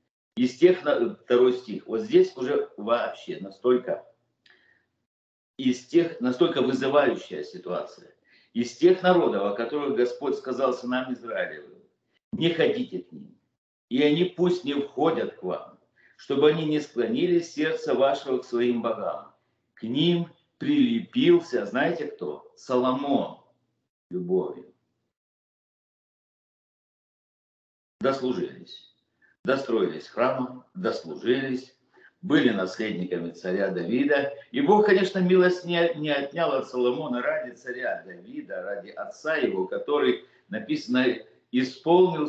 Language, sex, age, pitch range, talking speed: Russian, male, 50-69, 115-170 Hz, 110 wpm